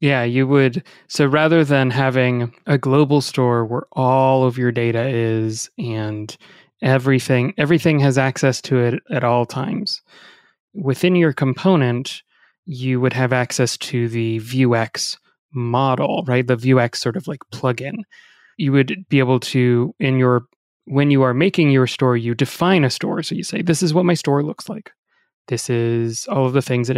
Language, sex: English, male